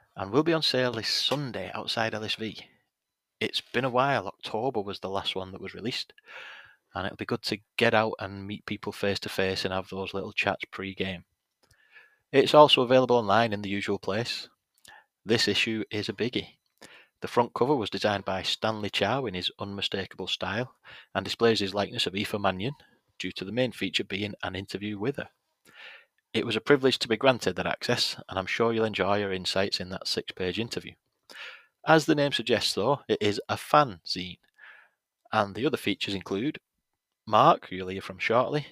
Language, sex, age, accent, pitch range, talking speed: English, male, 30-49, British, 95-115 Hz, 190 wpm